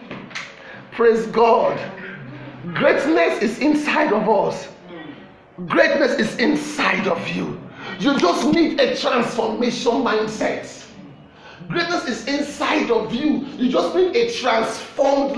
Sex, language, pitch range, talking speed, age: male, English, 225-310 Hz, 110 wpm, 40-59